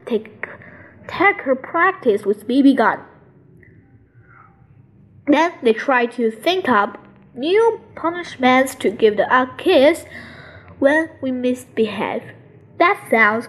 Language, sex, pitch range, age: Chinese, female, 230-345 Hz, 20-39